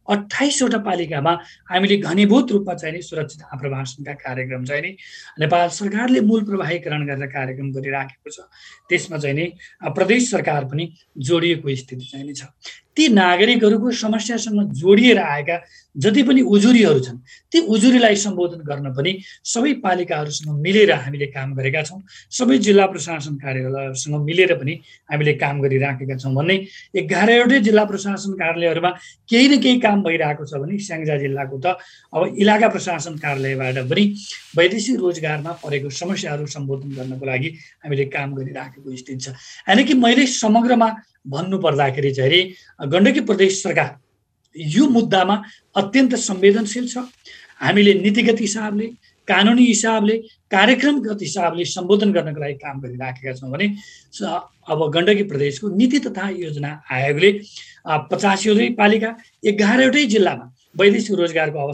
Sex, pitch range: male, 145-210 Hz